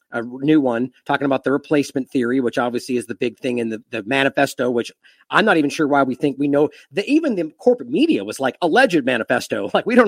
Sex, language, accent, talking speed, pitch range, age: male, English, American, 240 wpm, 145-215 Hz, 40-59